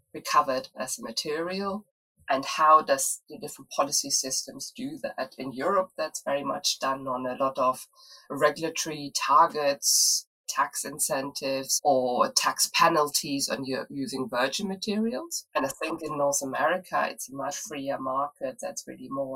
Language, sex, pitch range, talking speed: English, female, 130-190 Hz, 150 wpm